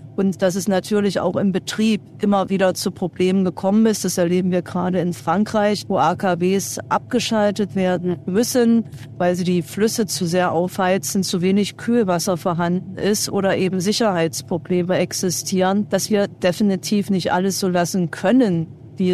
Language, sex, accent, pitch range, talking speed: German, female, German, 175-205 Hz, 155 wpm